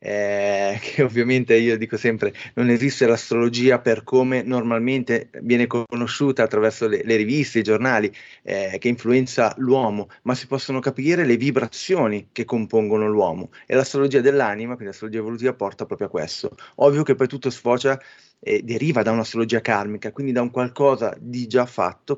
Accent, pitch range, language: native, 115-135 Hz, Italian